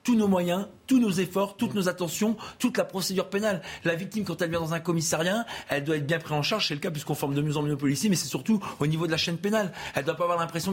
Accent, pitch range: French, 150-180 Hz